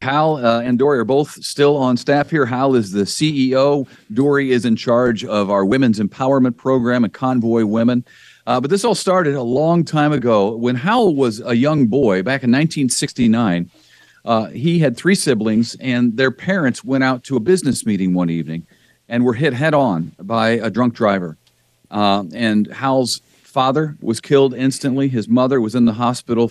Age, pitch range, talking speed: 50-69, 110-135 Hz, 185 wpm